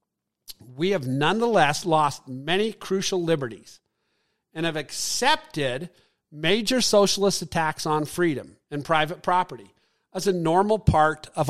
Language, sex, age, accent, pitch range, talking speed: English, male, 50-69, American, 155-200 Hz, 120 wpm